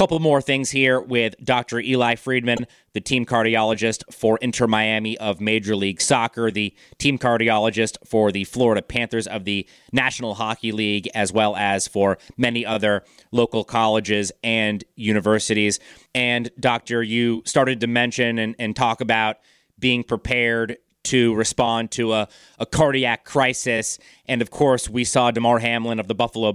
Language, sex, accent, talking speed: English, male, American, 155 wpm